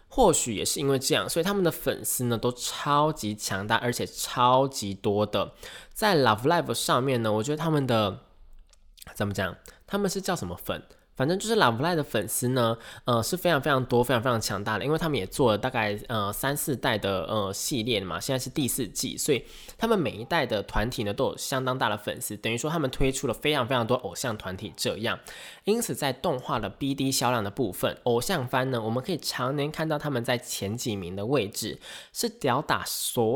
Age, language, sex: 20-39, Chinese, male